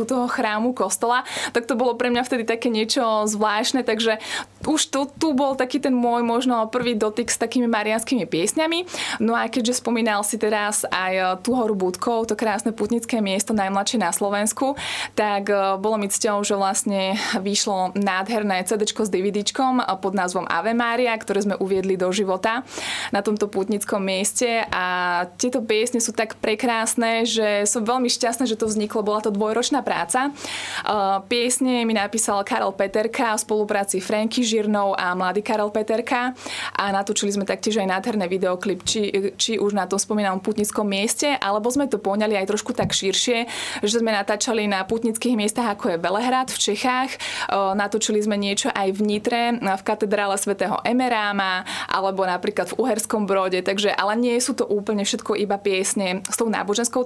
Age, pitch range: 20-39, 200-240 Hz